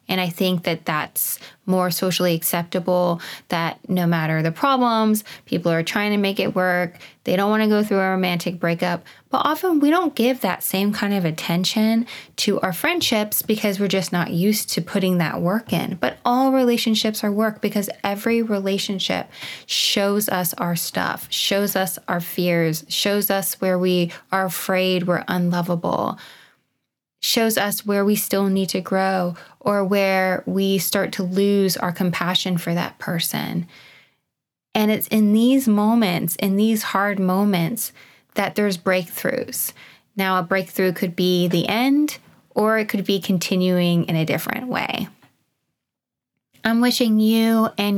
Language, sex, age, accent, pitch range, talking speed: English, female, 20-39, American, 180-215 Hz, 160 wpm